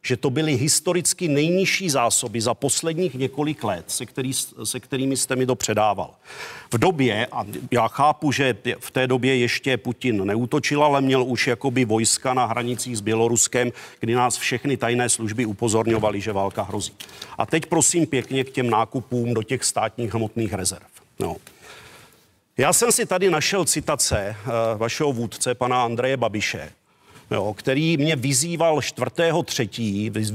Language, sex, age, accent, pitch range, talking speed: Czech, male, 40-59, native, 120-155 Hz, 150 wpm